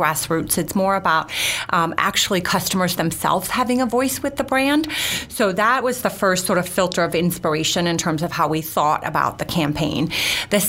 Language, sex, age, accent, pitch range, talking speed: English, female, 30-49, American, 160-195 Hz, 190 wpm